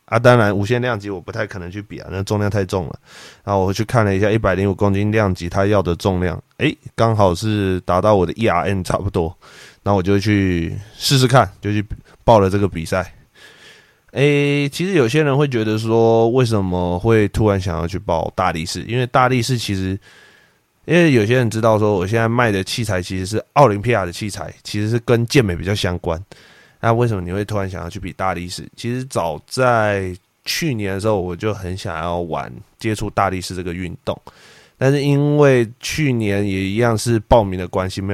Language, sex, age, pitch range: Chinese, male, 20-39, 95-120 Hz